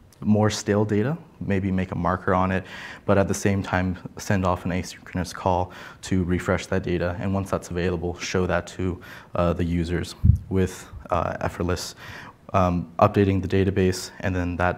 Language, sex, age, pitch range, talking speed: English, male, 20-39, 90-105 Hz, 175 wpm